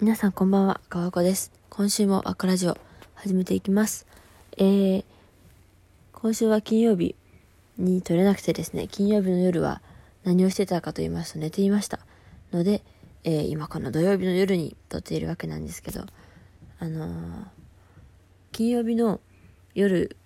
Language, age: Japanese, 20-39